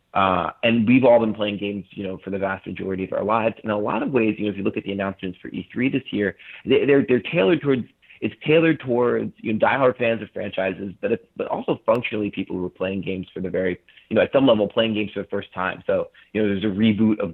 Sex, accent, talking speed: male, American, 265 wpm